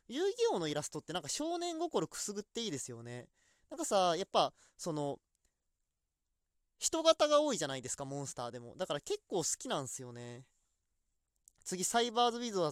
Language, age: Japanese, 20-39